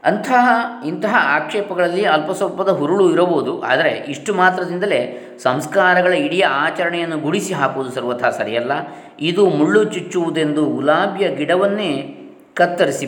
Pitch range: 135-180 Hz